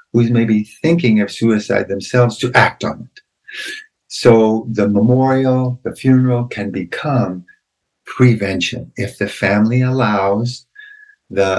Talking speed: 120 wpm